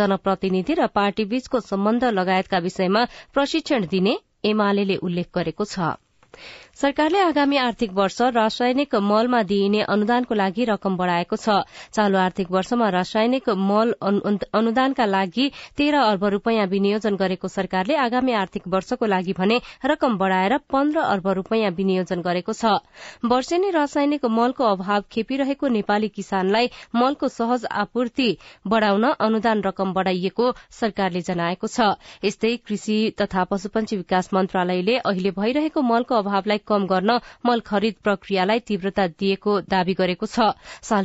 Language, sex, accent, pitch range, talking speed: English, female, Indian, 195-240 Hz, 115 wpm